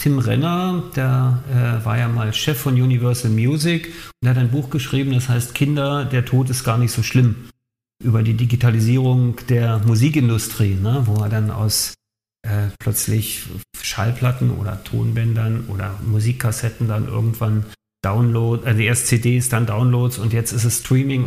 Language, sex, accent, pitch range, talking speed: German, male, German, 115-135 Hz, 160 wpm